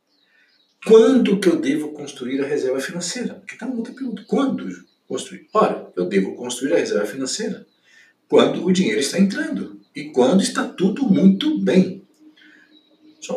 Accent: Brazilian